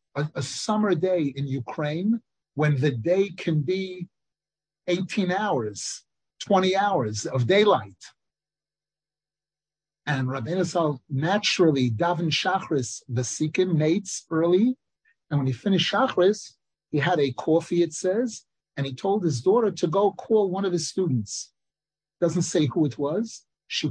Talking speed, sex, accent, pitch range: 140 wpm, male, American, 145-190 Hz